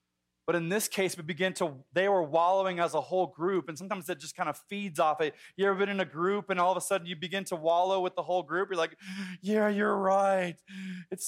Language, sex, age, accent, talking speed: English, male, 20-39, American, 255 wpm